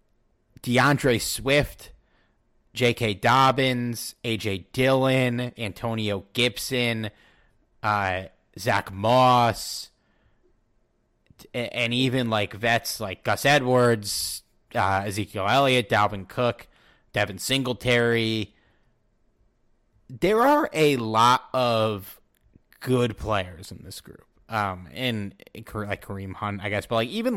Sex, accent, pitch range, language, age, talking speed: male, American, 100-125 Hz, English, 30-49, 95 wpm